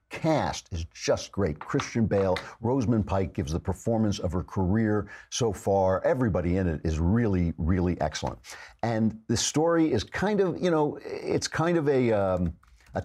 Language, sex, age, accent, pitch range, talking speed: English, male, 50-69, American, 85-110 Hz, 170 wpm